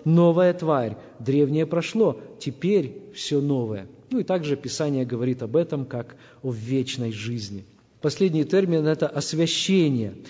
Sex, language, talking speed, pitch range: male, Russian, 130 wpm, 140-215 Hz